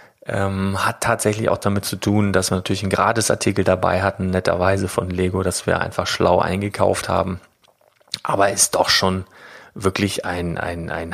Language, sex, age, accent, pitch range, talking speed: German, male, 30-49, German, 95-110 Hz, 165 wpm